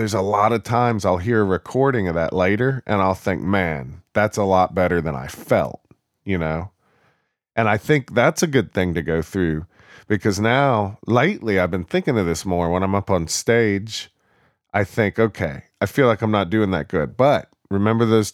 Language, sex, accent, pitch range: English, male, American, 90-110 Hz